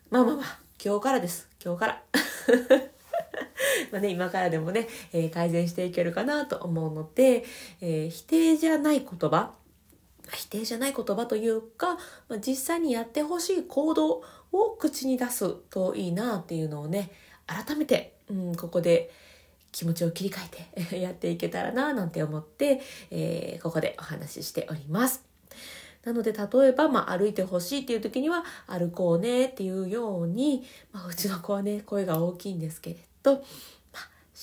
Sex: female